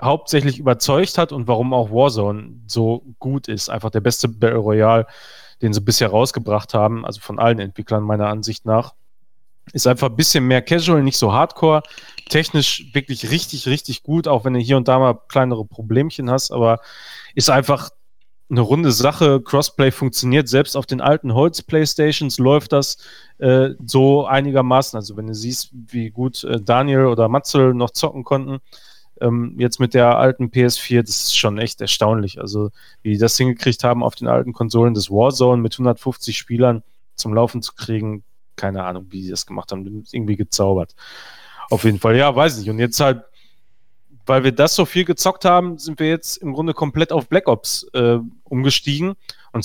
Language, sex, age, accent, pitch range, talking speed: German, male, 30-49, German, 115-140 Hz, 180 wpm